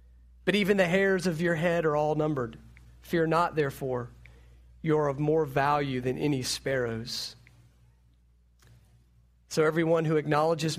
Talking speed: 135 wpm